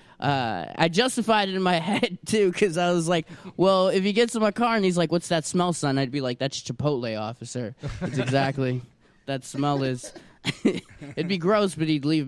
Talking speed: 210 wpm